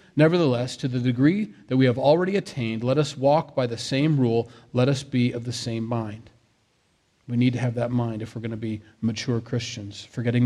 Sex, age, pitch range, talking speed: male, 40-59, 120-150 Hz, 210 wpm